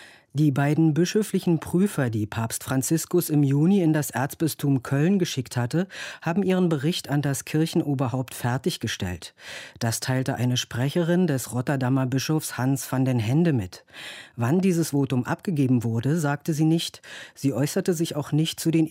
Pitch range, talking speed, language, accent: 125-160 Hz, 155 wpm, German, German